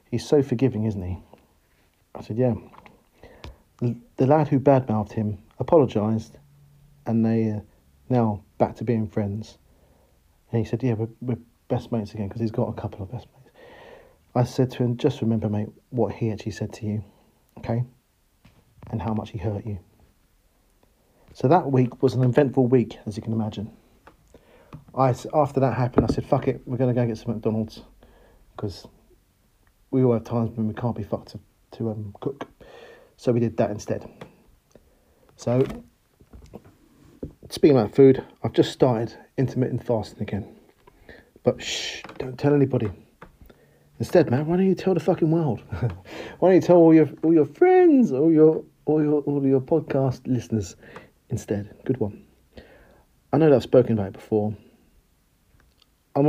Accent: British